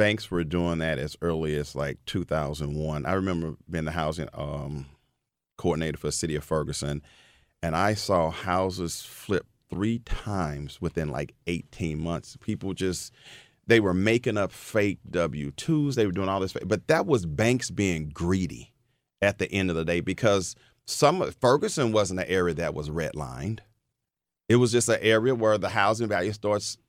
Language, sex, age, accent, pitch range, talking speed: English, male, 40-59, American, 90-120 Hz, 170 wpm